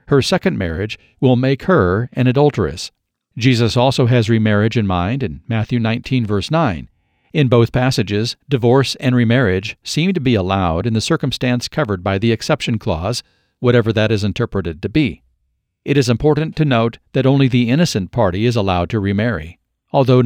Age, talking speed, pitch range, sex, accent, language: 50-69, 170 wpm, 100-130 Hz, male, American, English